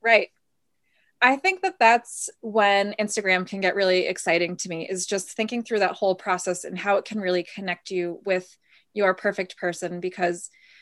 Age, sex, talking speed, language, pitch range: 20-39, female, 175 wpm, English, 180-220 Hz